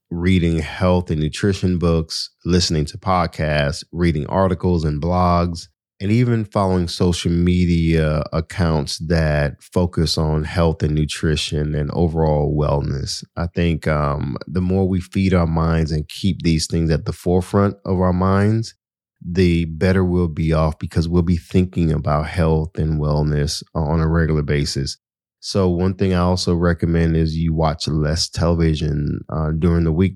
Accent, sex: American, male